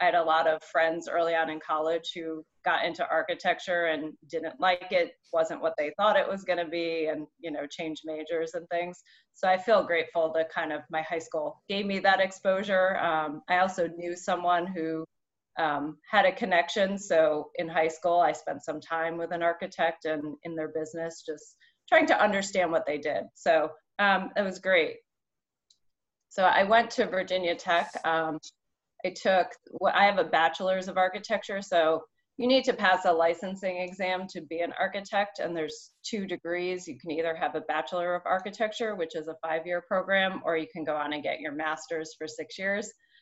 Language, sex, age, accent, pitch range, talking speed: English, female, 30-49, American, 160-190 Hz, 195 wpm